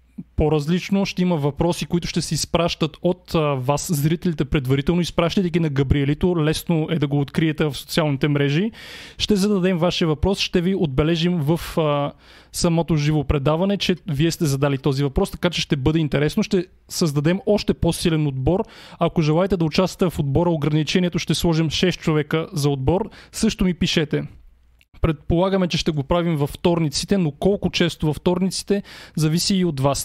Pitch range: 155-185 Hz